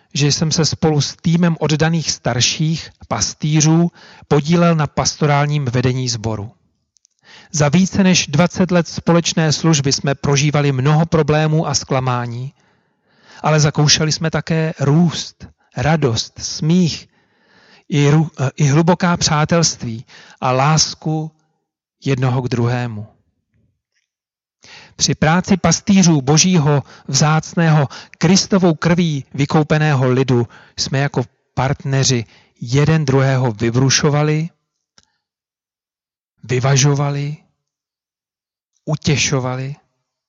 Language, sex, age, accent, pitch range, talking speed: Czech, male, 40-59, native, 130-160 Hz, 90 wpm